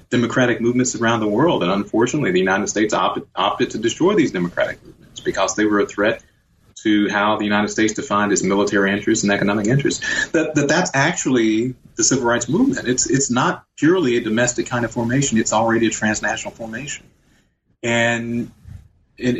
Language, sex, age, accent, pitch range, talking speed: English, male, 30-49, American, 105-135 Hz, 180 wpm